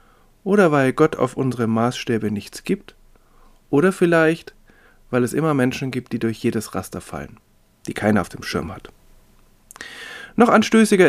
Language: German